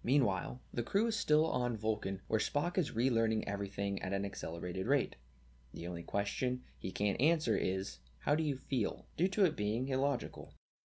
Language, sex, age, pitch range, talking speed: English, male, 20-39, 95-135 Hz, 175 wpm